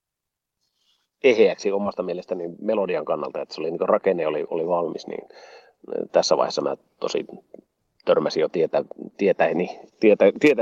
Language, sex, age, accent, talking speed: Finnish, male, 30-49, native, 135 wpm